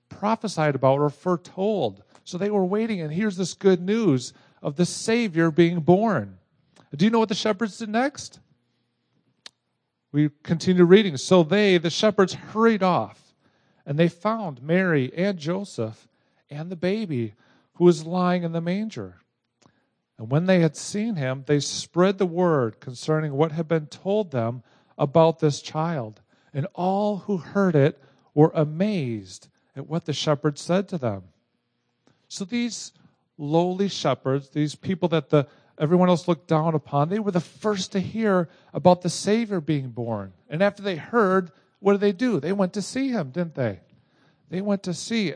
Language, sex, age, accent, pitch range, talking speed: English, male, 50-69, American, 145-195 Hz, 165 wpm